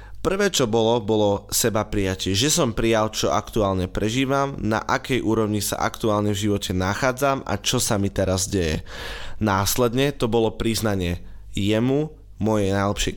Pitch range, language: 100-120 Hz, Slovak